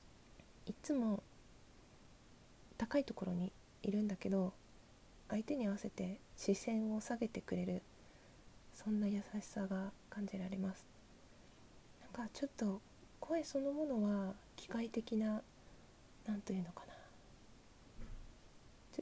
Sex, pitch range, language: female, 185-215 Hz, Japanese